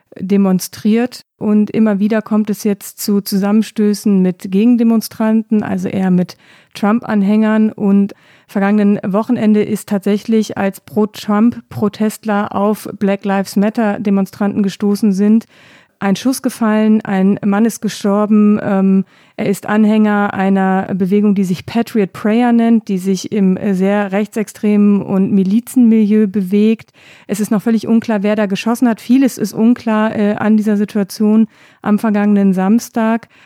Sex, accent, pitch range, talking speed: female, German, 200-220 Hz, 130 wpm